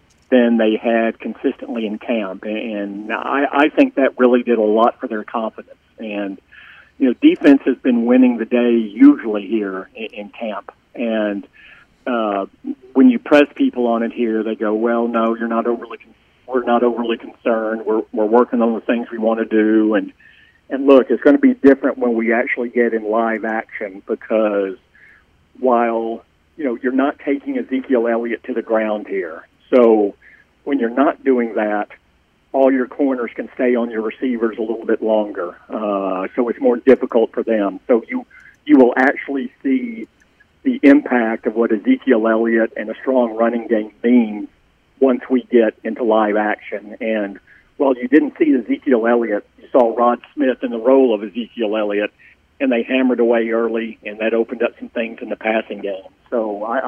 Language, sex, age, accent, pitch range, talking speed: English, male, 50-69, American, 110-130 Hz, 185 wpm